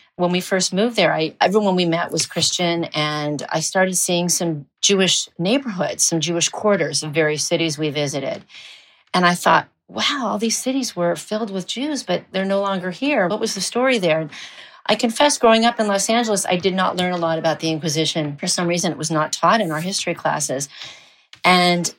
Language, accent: English, American